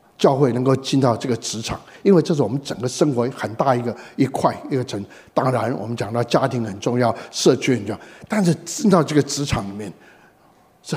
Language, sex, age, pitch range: Chinese, male, 60-79, 120-175 Hz